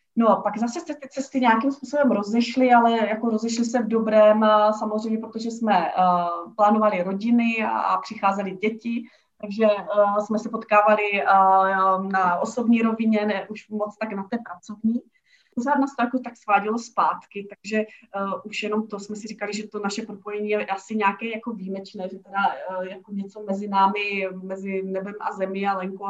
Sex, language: female, Czech